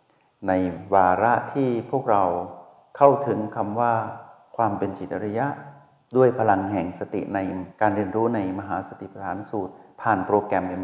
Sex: male